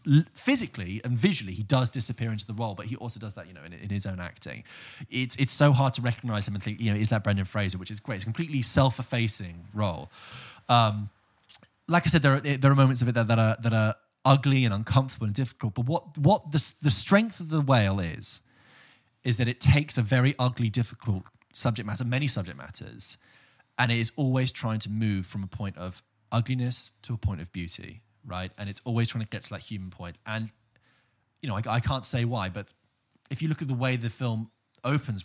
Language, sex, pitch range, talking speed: English, male, 105-125 Hz, 230 wpm